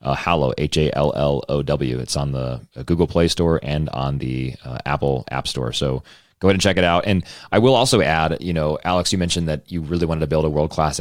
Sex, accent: male, American